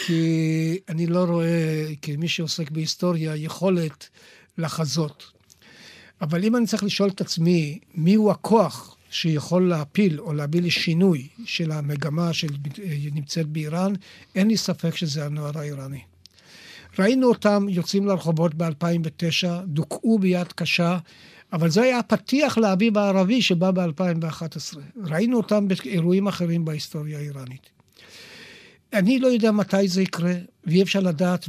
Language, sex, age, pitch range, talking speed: Hebrew, male, 60-79, 160-195 Hz, 120 wpm